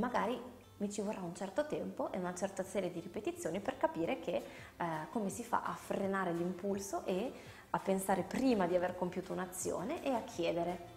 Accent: native